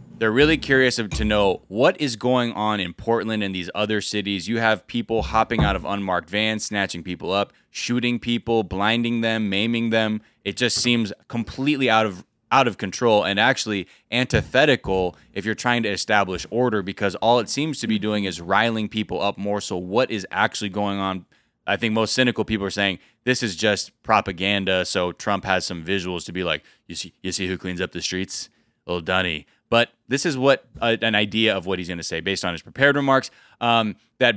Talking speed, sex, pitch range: 205 wpm, male, 100-125 Hz